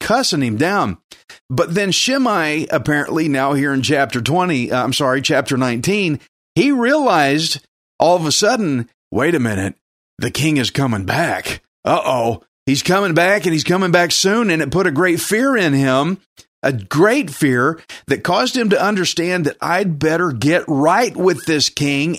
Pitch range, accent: 140-185 Hz, American